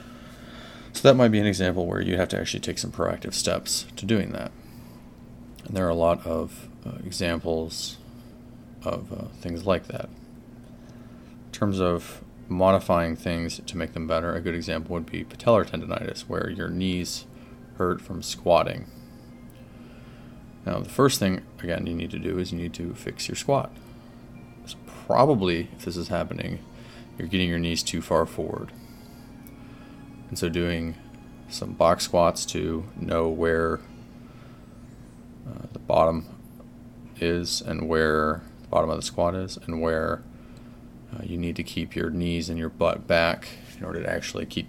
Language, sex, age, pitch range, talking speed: English, male, 30-49, 85-95 Hz, 160 wpm